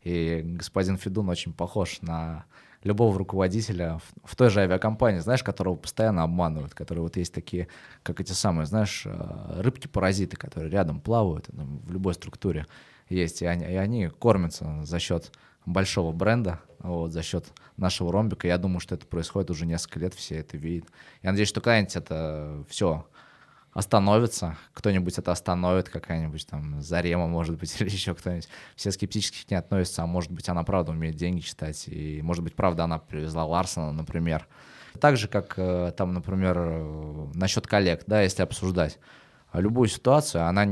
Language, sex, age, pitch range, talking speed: Russian, male, 20-39, 85-100 Hz, 160 wpm